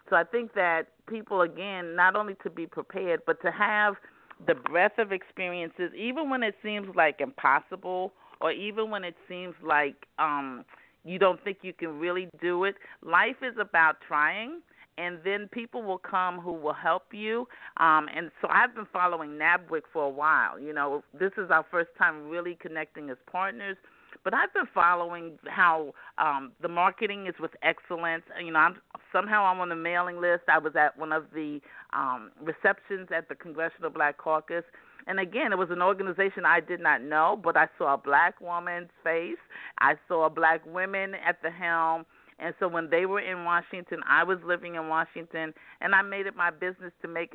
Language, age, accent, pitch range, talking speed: English, 50-69, American, 160-195 Hz, 190 wpm